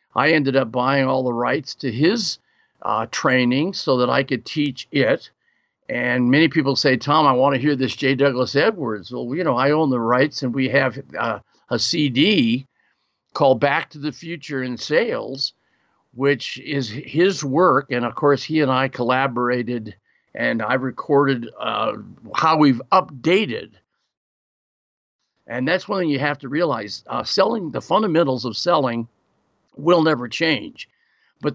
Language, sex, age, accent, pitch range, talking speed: English, male, 50-69, American, 125-155 Hz, 165 wpm